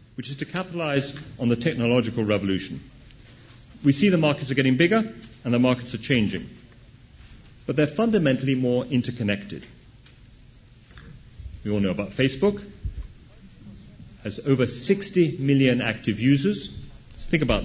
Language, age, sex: English, 40-59, male